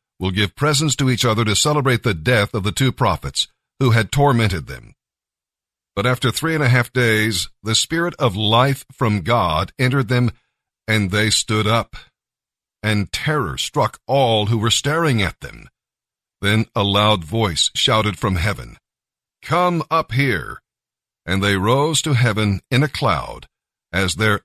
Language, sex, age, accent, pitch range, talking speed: English, male, 50-69, American, 105-130 Hz, 160 wpm